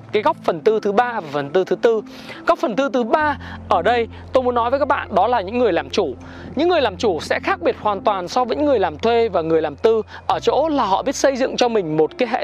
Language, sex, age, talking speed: Vietnamese, male, 20-39, 290 wpm